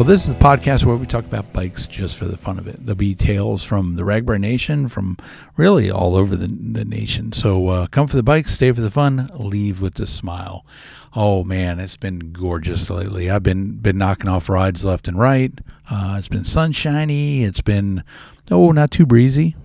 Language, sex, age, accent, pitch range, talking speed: English, male, 50-69, American, 95-120 Hz, 210 wpm